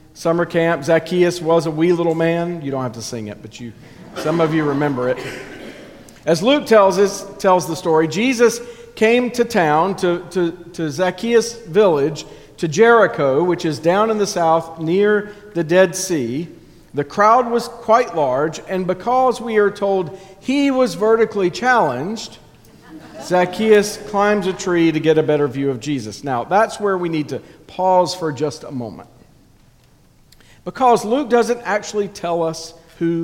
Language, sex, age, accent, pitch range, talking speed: English, male, 50-69, American, 145-200 Hz, 165 wpm